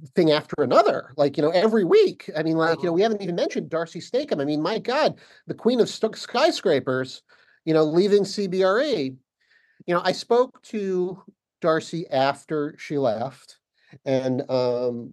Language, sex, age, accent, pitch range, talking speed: English, male, 40-59, American, 130-185 Hz, 165 wpm